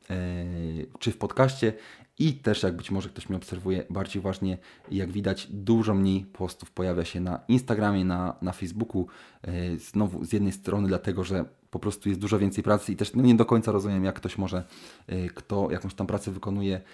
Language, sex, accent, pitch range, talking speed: Polish, male, native, 95-110 Hz, 180 wpm